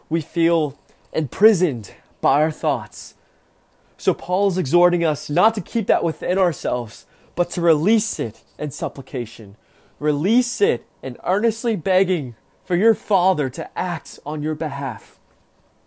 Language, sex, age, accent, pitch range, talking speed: English, male, 20-39, American, 135-195 Hz, 135 wpm